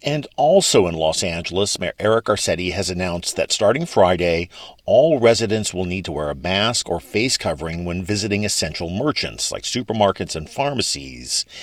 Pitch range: 85-115 Hz